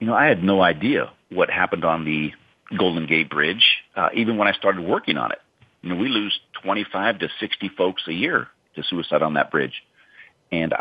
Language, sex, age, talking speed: English, male, 50-69, 205 wpm